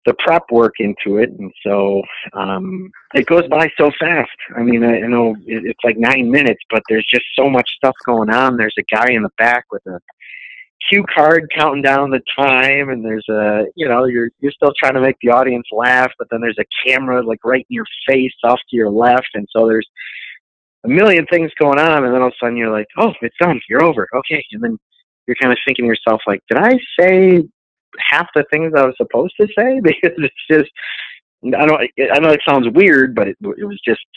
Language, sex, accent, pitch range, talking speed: English, male, American, 115-165 Hz, 225 wpm